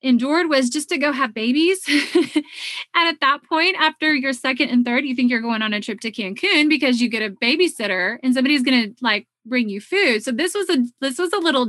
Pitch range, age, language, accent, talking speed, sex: 220-280 Hz, 30-49, English, American, 235 wpm, female